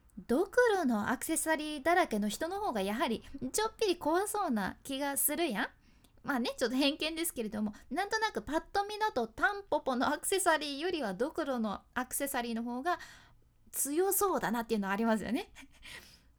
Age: 20-39